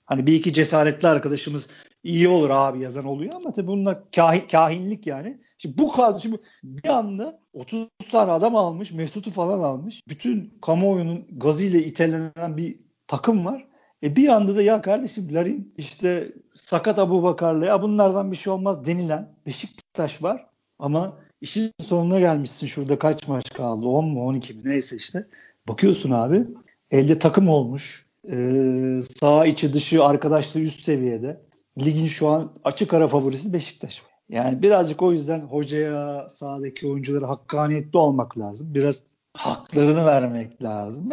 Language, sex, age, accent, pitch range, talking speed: Turkish, male, 50-69, native, 145-195 Hz, 145 wpm